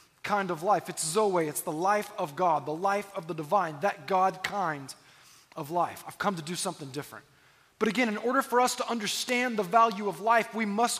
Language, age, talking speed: English, 20-39, 220 wpm